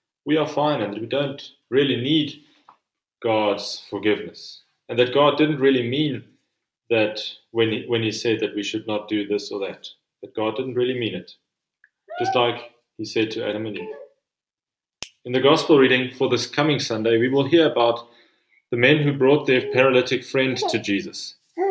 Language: English